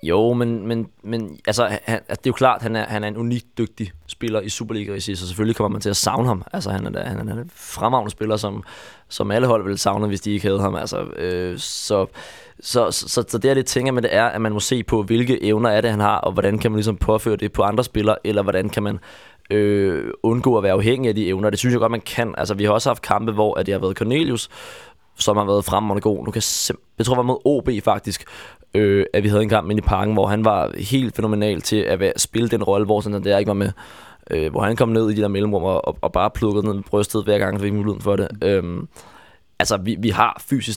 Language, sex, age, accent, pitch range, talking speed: Danish, male, 20-39, native, 100-115 Hz, 260 wpm